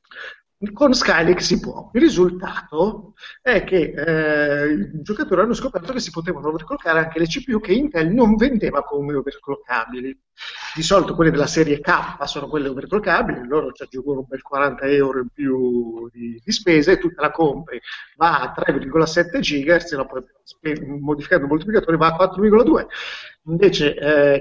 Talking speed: 160 wpm